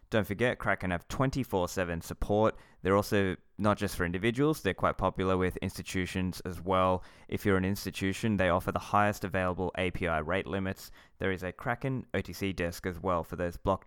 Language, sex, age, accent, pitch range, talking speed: English, male, 20-39, Australian, 85-100 Hz, 180 wpm